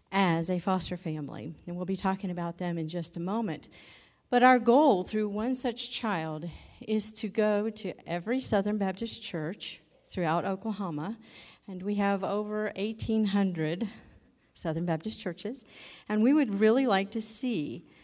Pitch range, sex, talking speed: 170-215 Hz, female, 155 wpm